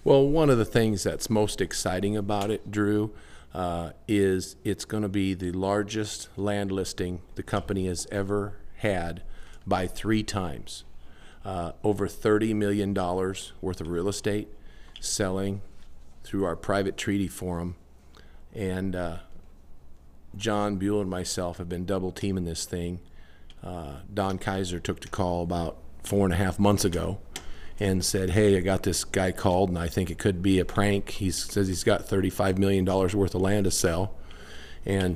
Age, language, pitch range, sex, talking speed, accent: 50-69, English, 85-100 Hz, male, 165 wpm, American